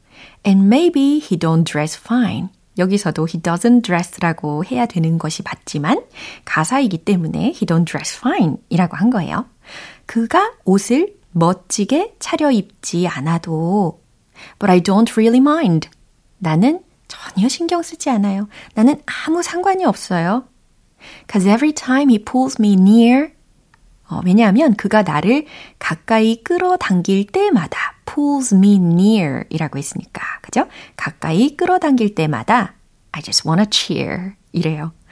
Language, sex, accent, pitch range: Korean, female, native, 170-245 Hz